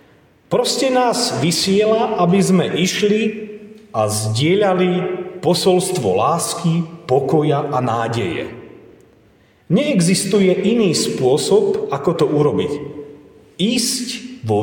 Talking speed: 85 wpm